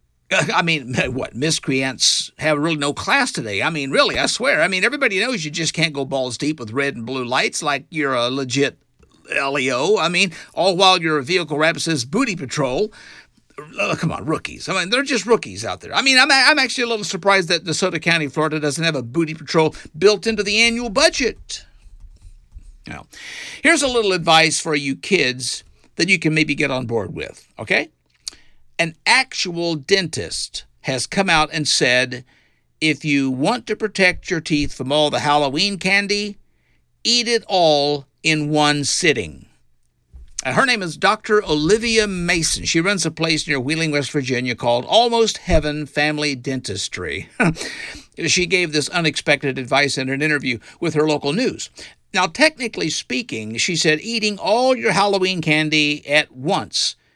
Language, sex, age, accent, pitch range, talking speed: English, male, 50-69, American, 140-195 Hz, 175 wpm